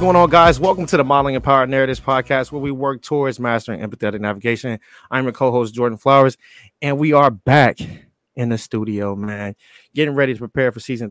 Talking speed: 195 wpm